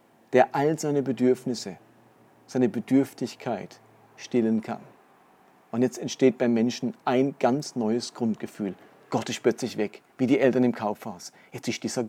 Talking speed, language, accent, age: 145 wpm, German, German, 40-59